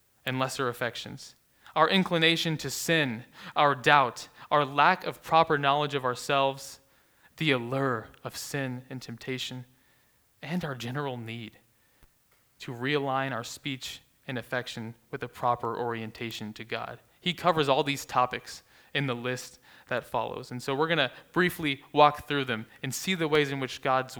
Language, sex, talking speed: English, male, 160 wpm